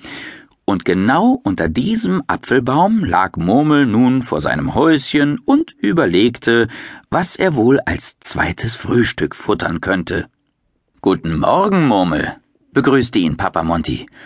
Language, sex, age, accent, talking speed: German, male, 50-69, German, 120 wpm